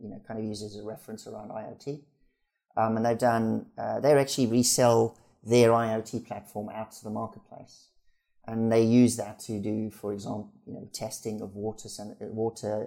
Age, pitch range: 40-59, 105-115 Hz